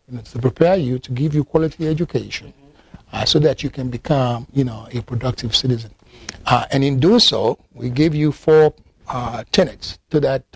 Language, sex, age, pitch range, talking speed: English, male, 60-79, 115-135 Hz, 195 wpm